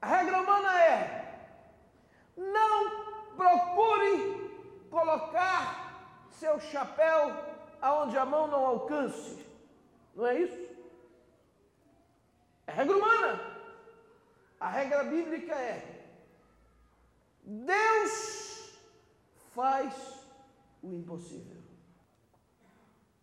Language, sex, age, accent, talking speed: English, male, 50-69, Brazilian, 70 wpm